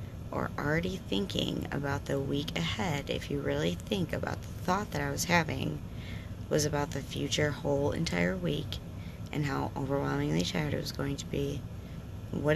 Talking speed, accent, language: 160 wpm, American, English